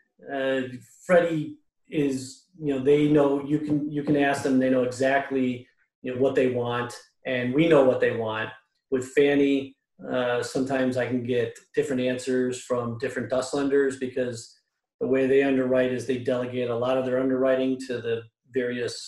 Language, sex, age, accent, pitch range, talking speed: English, male, 40-59, American, 125-140 Hz, 175 wpm